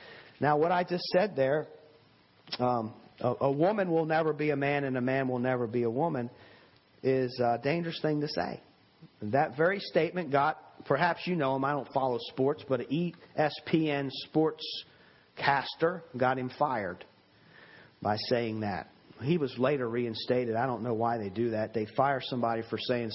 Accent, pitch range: American, 125-160 Hz